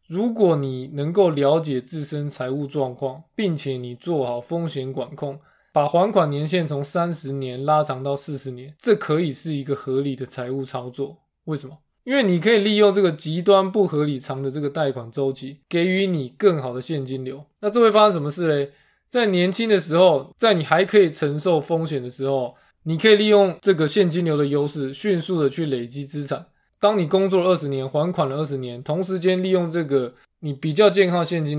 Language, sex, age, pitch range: Chinese, male, 20-39, 135-180 Hz